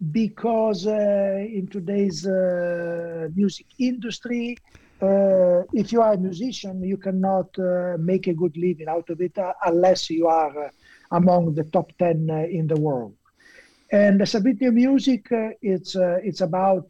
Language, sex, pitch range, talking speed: German, male, 170-205 Hz, 165 wpm